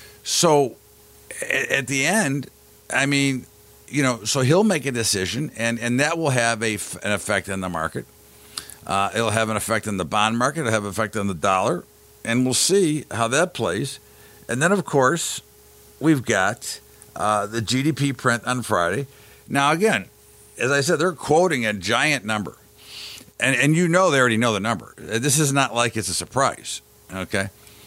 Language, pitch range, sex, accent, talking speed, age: English, 105-140 Hz, male, American, 185 wpm, 50-69